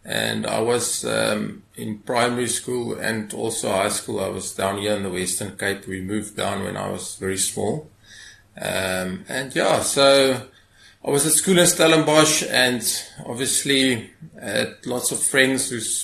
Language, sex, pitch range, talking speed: English, male, 110-130 Hz, 165 wpm